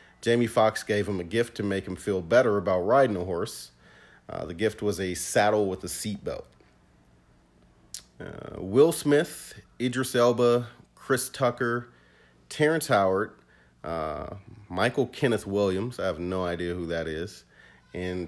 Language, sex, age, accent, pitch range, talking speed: English, male, 40-59, American, 90-125 Hz, 145 wpm